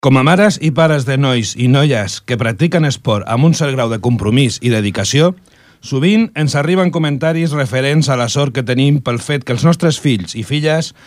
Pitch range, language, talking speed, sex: 125-160 Hz, Italian, 205 wpm, male